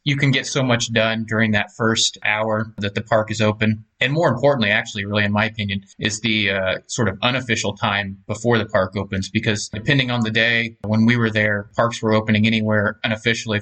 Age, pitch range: 30-49, 105-115 Hz